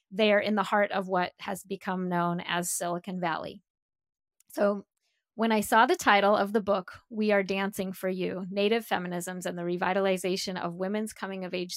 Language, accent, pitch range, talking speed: English, American, 185-220 Hz, 180 wpm